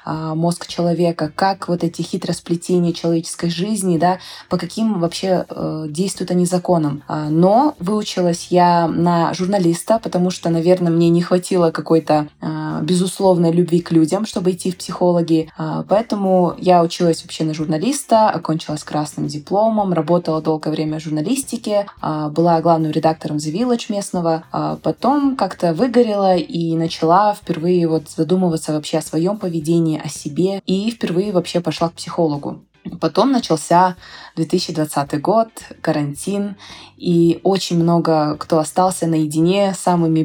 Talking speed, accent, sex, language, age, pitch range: 135 wpm, native, female, Russian, 20-39, 160-185 Hz